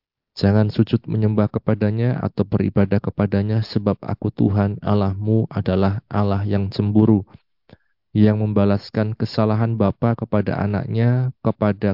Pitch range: 95-110 Hz